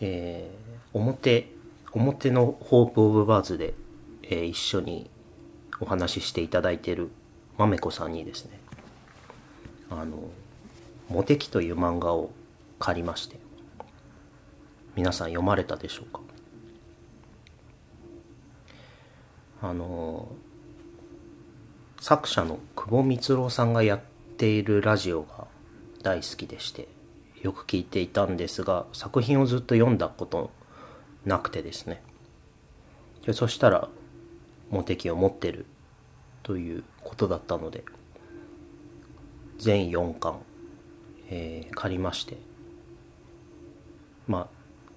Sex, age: male, 40-59